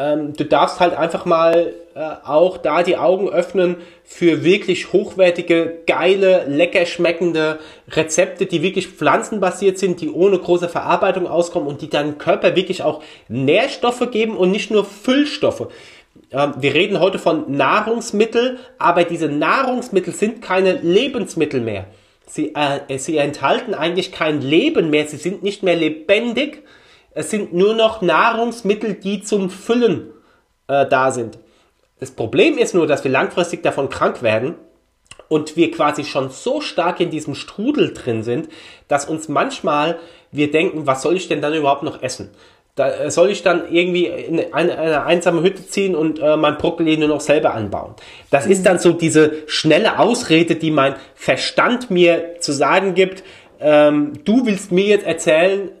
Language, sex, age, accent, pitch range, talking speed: German, male, 30-49, German, 155-195 Hz, 160 wpm